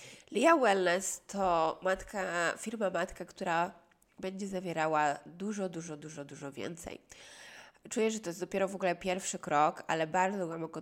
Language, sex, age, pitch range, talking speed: Polish, female, 20-39, 165-205 Hz, 150 wpm